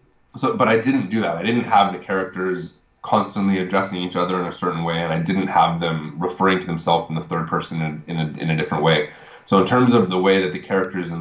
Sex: male